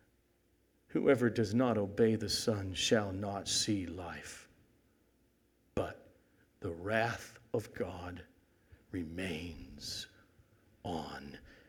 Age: 50-69